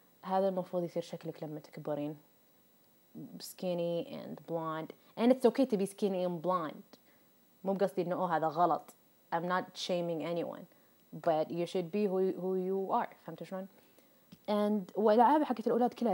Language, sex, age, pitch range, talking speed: Arabic, female, 20-39, 165-210 Hz, 65 wpm